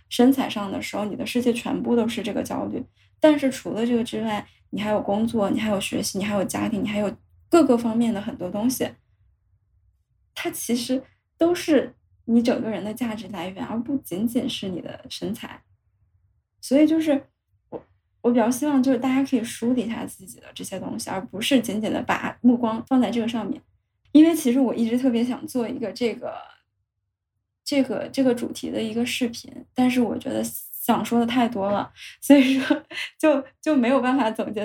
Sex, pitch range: female, 210-265 Hz